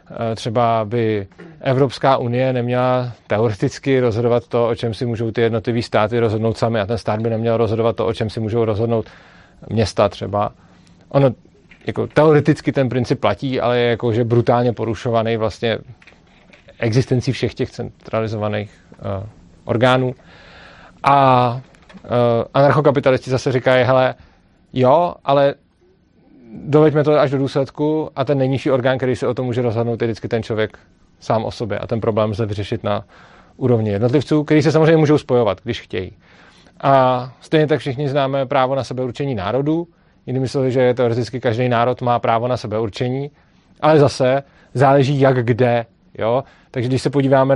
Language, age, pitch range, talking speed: Czech, 30-49, 115-135 Hz, 150 wpm